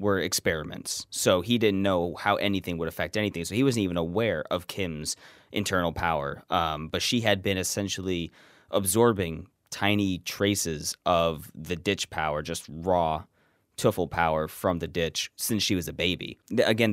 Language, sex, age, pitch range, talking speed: English, male, 20-39, 85-100 Hz, 165 wpm